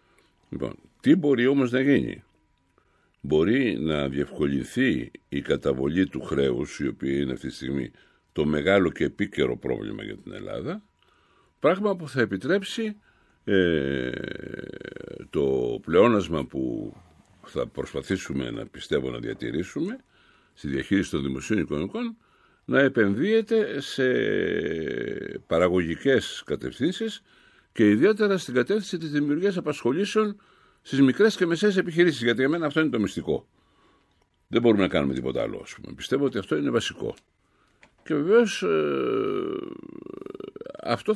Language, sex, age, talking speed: Greek, male, 60-79, 120 wpm